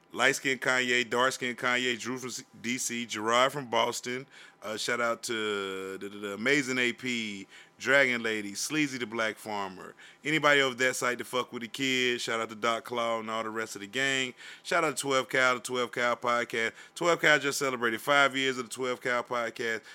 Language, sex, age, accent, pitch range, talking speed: English, male, 30-49, American, 115-135 Hz, 205 wpm